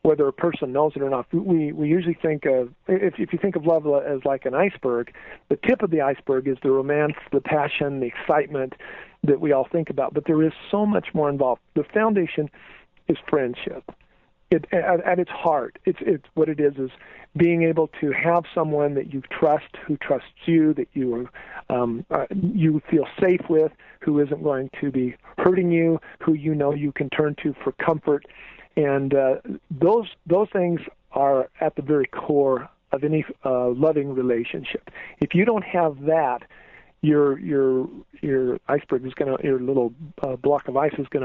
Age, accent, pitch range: 50-69, American, 135-165 Hz